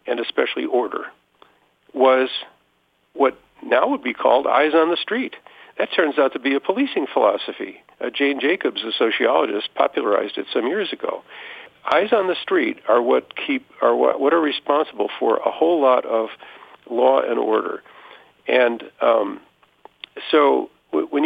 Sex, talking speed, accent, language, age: male, 160 wpm, American, English, 50-69